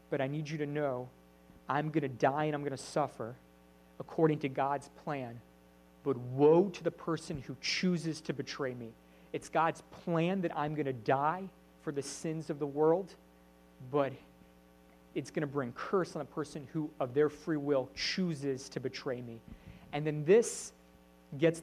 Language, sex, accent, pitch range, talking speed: English, male, American, 120-160 Hz, 180 wpm